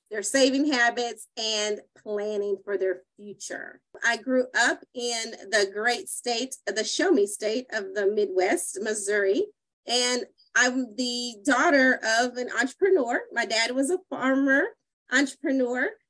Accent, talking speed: American, 130 wpm